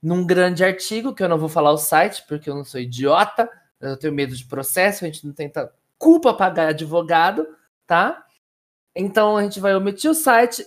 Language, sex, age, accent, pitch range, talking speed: Portuguese, male, 20-39, Brazilian, 155-215 Hz, 195 wpm